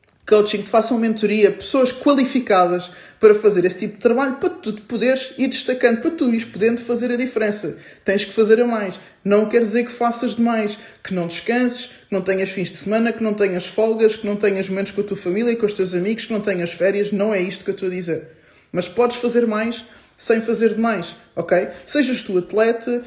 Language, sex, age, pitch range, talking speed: English, male, 20-39, 185-235 Hz, 220 wpm